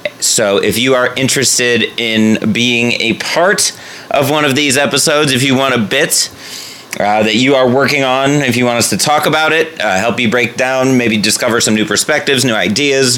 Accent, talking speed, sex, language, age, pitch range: American, 205 wpm, male, English, 30-49, 110-135 Hz